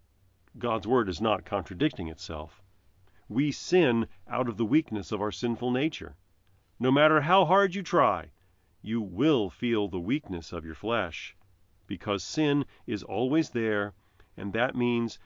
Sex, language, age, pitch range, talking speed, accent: male, English, 40-59, 95-135 Hz, 150 wpm, American